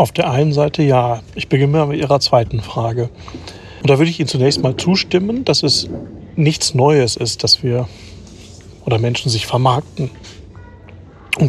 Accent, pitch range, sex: German, 120-150 Hz, male